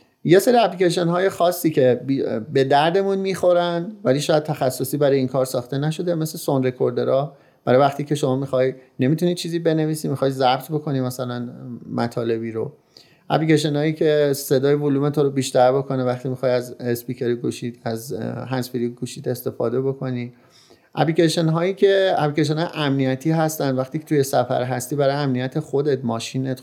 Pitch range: 125-160 Hz